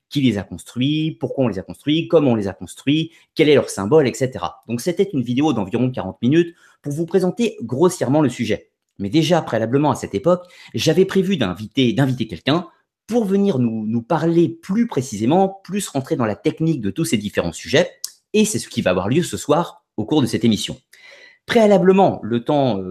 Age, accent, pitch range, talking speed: 30-49, French, 110-155 Hz, 200 wpm